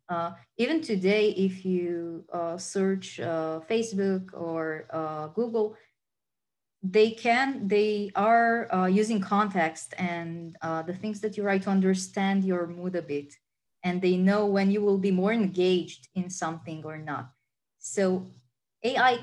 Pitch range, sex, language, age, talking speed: 170-200 Hz, female, English, 20-39, 145 wpm